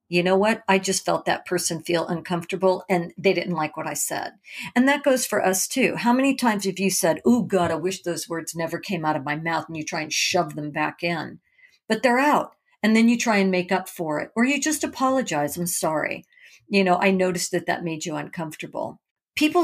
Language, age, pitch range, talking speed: English, 50-69, 170-240 Hz, 235 wpm